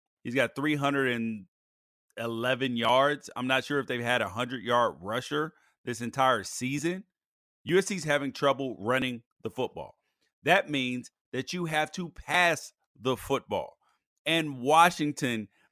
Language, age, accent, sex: English, 30-49, American, male